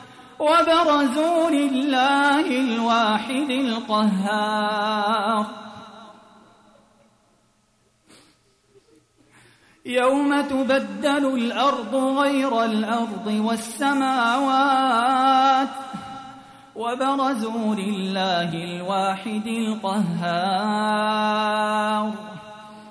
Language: Arabic